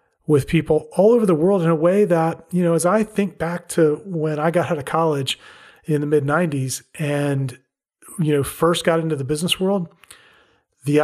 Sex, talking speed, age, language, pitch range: male, 200 wpm, 40-59, English, 145-175 Hz